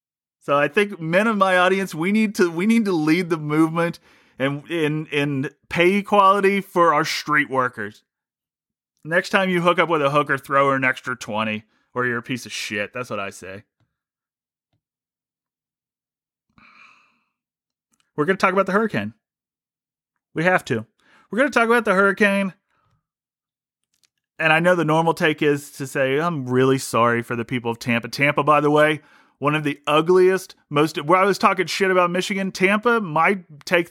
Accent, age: American, 30-49